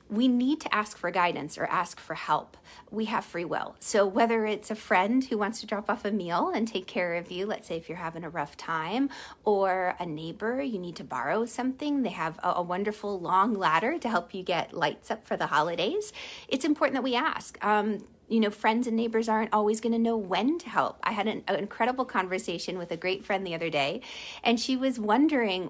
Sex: female